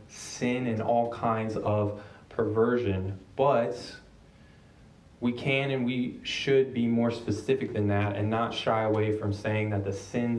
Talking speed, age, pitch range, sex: 150 wpm, 20-39, 100-115 Hz, male